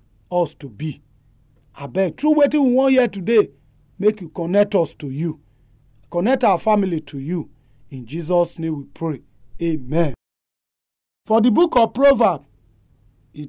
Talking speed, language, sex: 145 wpm, English, male